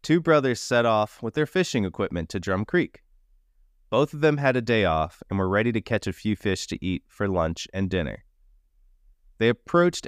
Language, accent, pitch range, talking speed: English, American, 80-120 Hz, 200 wpm